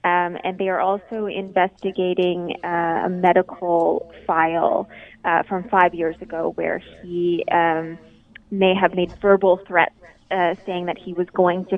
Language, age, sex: English, 20-39, female